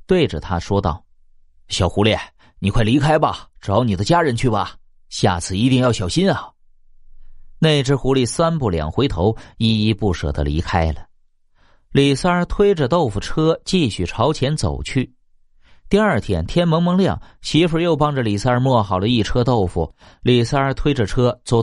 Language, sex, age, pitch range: Chinese, male, 30-49, 90-145 Hz